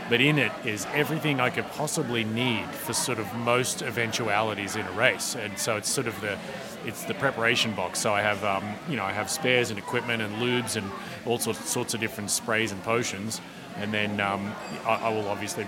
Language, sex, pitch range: English, male, 105-125 Hz